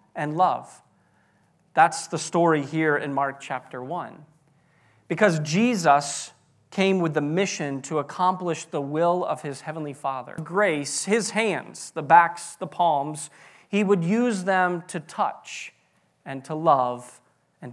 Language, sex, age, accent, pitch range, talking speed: English, male, 40-59, American, 145-190 Hz, 140 wpm